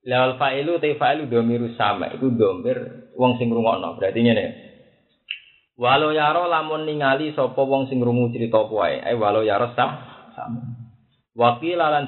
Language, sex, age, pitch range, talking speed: Indonesian, male, 20-39, 105-125 Hz, 125 wpm